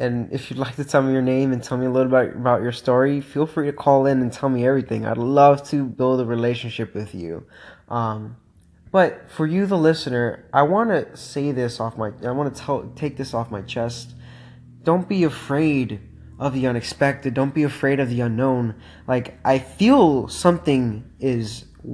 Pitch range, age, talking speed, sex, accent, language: 120-150 Hz, 20-39, 205 wpm, male, American, English